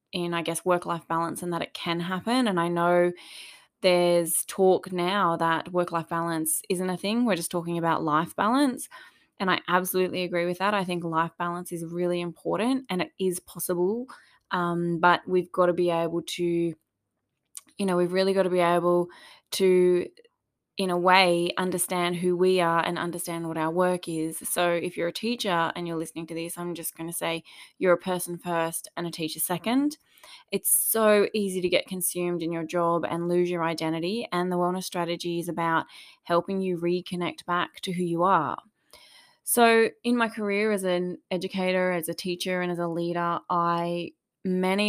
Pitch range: 170-185 Hz